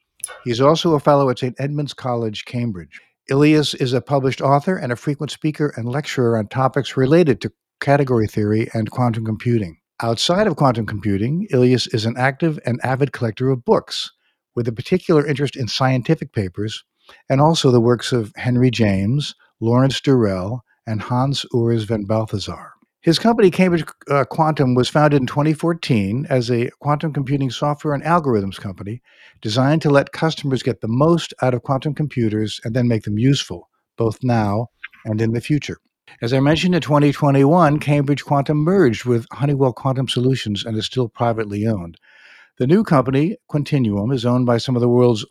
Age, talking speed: 60-79, 170 wpm